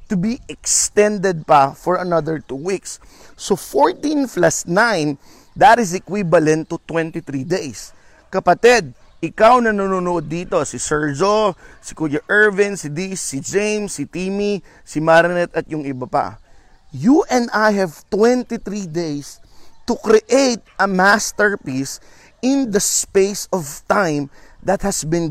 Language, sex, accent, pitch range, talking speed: Filipino, male, native, 160-220 Hz, 135 wpm